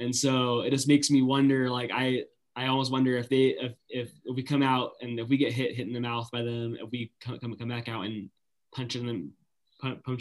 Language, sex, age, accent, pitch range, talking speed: English, male, 20-39, American, 115-125 Hz, 240 wpm